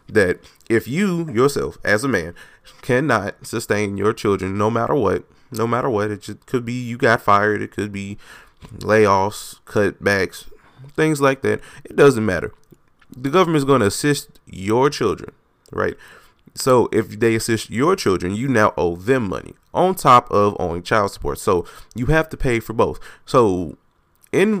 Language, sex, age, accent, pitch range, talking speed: English, male, 20-39, American, 100-125 Hz, 170 wpm